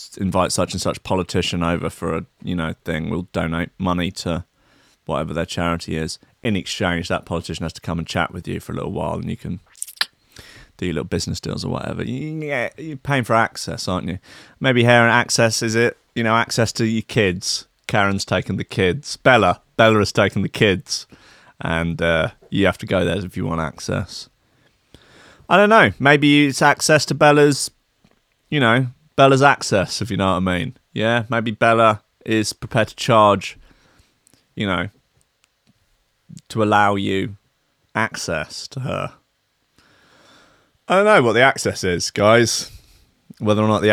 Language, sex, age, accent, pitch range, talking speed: English, male, 30-49, British, 90-120 Hz, 175 wpm